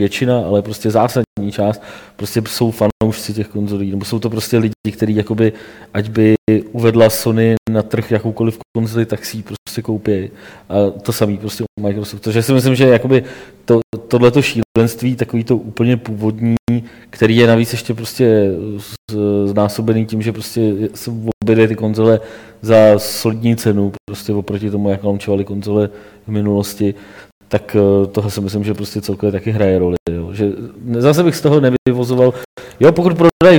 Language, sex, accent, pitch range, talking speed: Czech, male, native, 105-120 Hz, 160 wpm